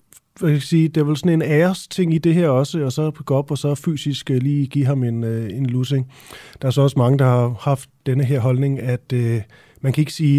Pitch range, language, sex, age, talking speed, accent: 125-160 Hz, Danish, male, 30-49, 260 wpm, native